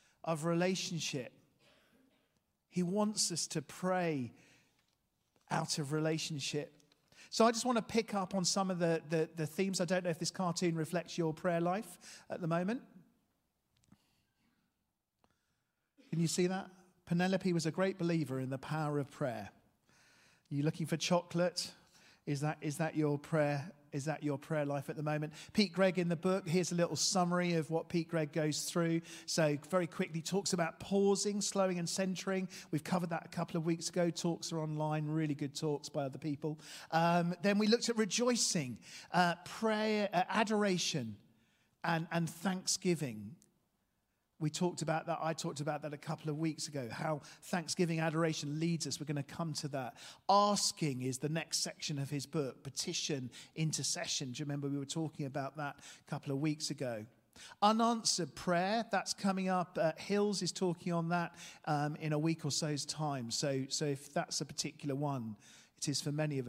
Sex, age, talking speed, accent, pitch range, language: male, 40-59, 180 wpm, British, 150-180 Hz, English